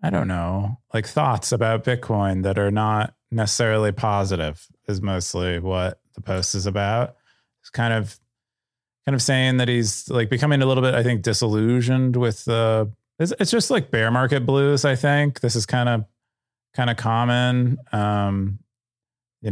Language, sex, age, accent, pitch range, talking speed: English, male, 20-39, American, 95-120 Hz, 165 wpm